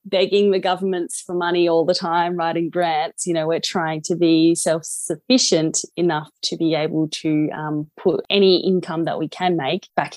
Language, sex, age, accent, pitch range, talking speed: English, female, 20-39, Australian, 160-190 Hz, 185 wpm